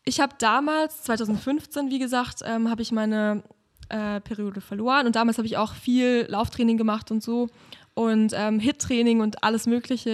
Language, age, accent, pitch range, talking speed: German, 20-39, German, 215-245 Hz, 170 wpm